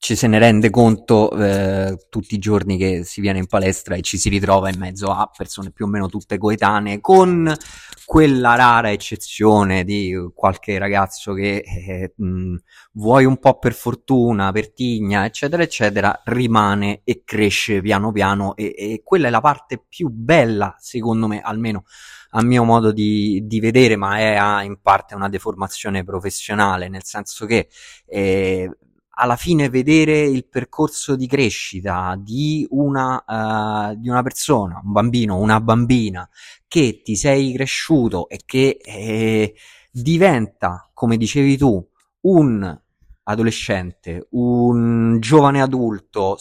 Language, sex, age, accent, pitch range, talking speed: Italian, male, 20-39, native, 100-130 Hz, 145 wpm